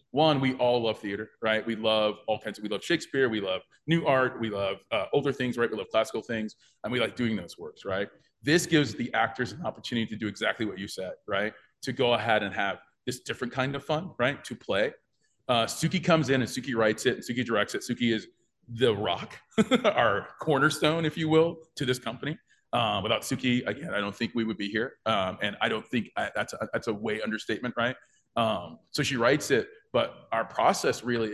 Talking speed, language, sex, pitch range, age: 220 wpm, English, male, 110-135 Hz, 30-49